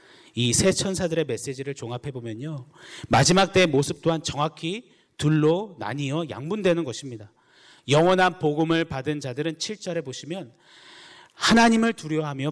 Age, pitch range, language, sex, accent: 30-49, 125-160 Hz, Korean, male, native